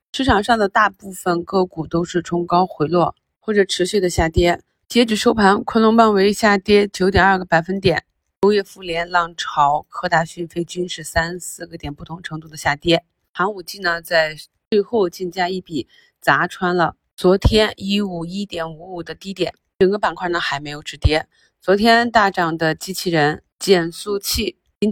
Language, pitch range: Chinese, 165-195 Hz